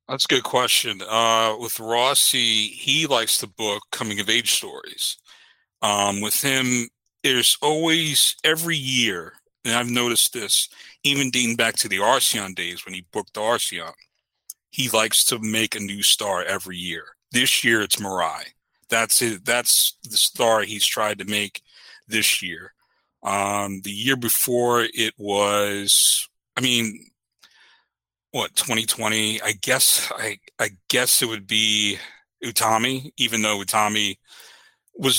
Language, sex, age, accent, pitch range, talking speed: English, male, 40-59, American, 105-125 Hz, 140 wpm